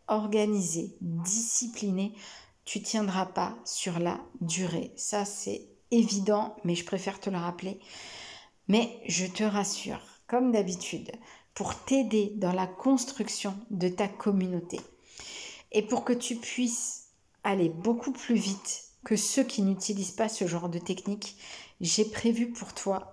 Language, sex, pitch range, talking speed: French, female, 190-230 Hz, 140 wpm